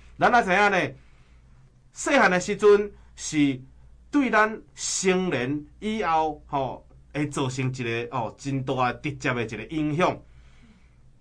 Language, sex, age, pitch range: Chinese, male, 30-49, 125-200 Hz